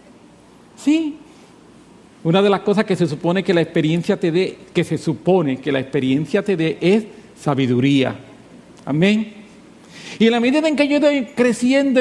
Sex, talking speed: male, 165 wpm